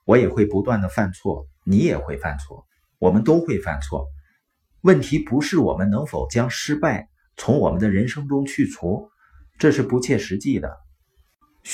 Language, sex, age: Chinese, male, 50-69